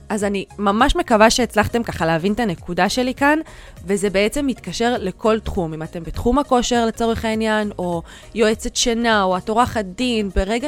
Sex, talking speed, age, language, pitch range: female, 170 wpm, 20-39, Hebrew, 185-230 Hz